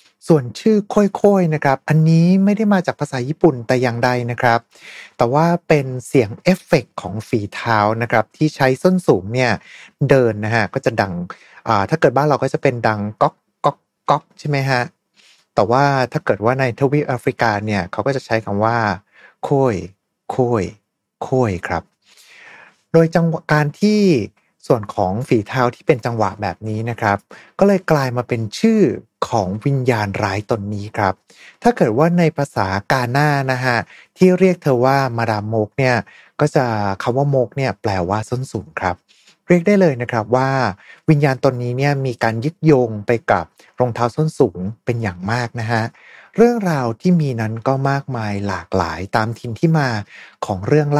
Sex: male